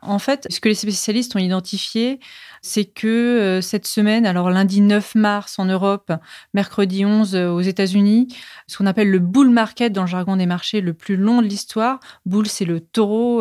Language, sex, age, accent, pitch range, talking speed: French, female, 30-49, French, 190-235 Hz, 205 wpm